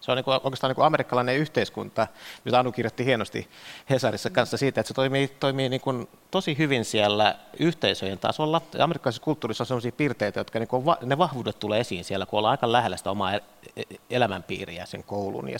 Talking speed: 160 wpm